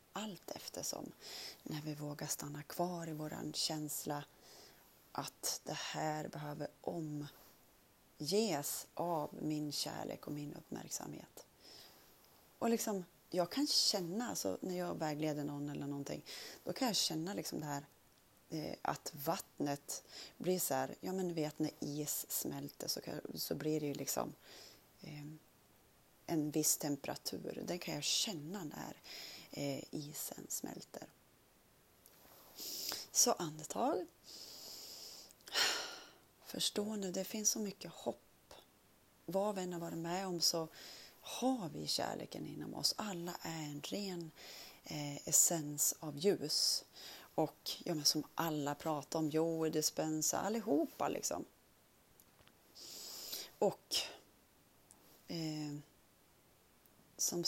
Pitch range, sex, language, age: 150-180 Hz, female, Swedish, 30-49